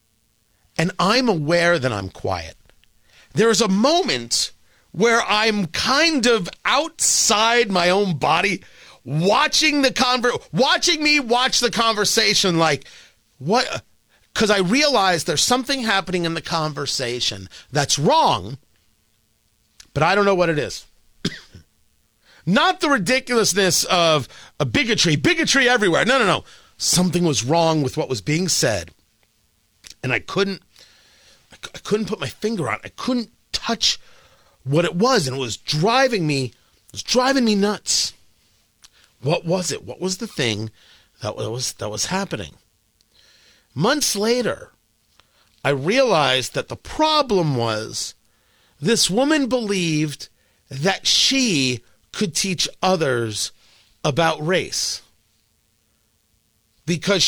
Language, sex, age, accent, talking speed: English, male, 40-59, American, 125 wpm